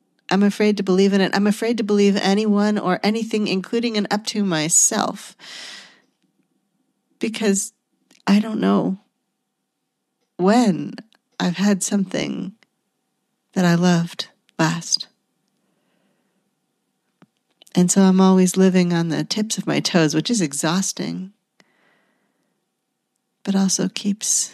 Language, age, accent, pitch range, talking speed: English, 40-59, American, 175-210 Hz, 115 wpm